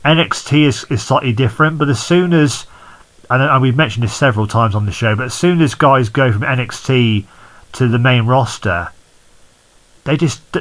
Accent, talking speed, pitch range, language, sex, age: British, 180 wpm, 110-140 Hz, English, male, 40-59